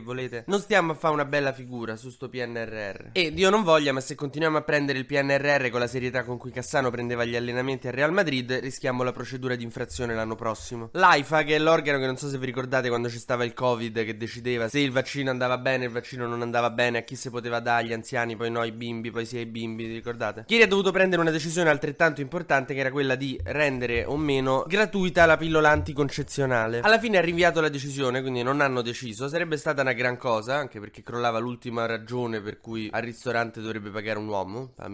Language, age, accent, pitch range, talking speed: Italian, 20-39, native, 115-145 Hz, 230 wpm